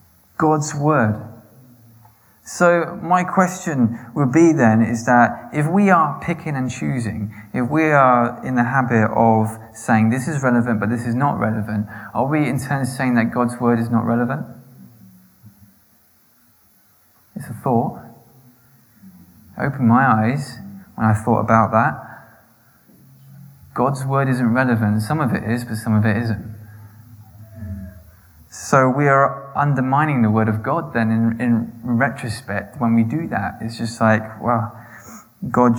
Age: 20-39